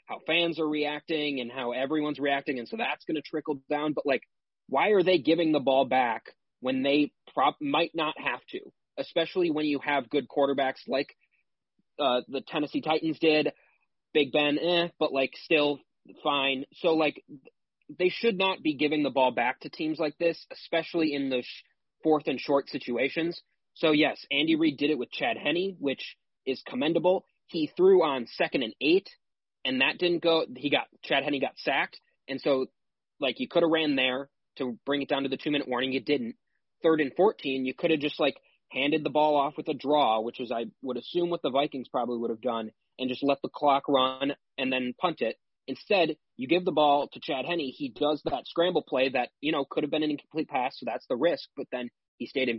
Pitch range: 135-165 Hz